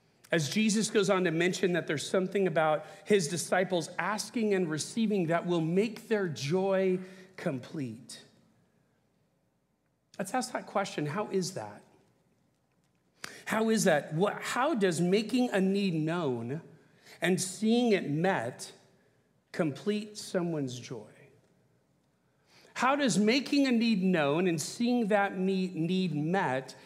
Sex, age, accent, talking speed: male, 40-59, American, 125 wpm